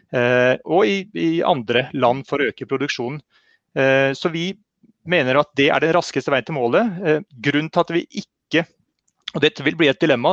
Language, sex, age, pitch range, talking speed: English, male, 30-49, 130-165 Hz, 190 wpm